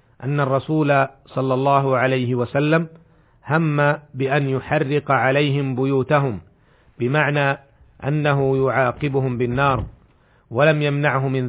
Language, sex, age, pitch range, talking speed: Arabic, male, 40-59, 130-145 Hz, 95 wpm